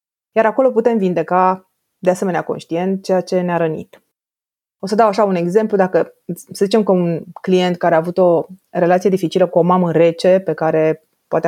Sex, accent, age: female, native, 20-39